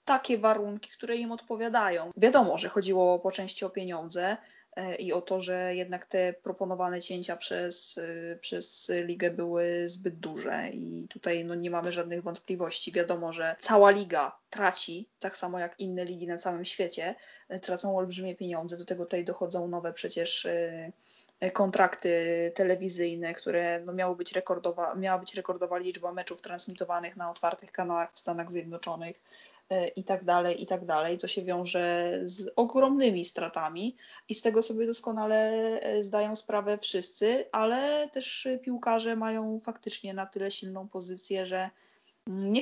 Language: Polish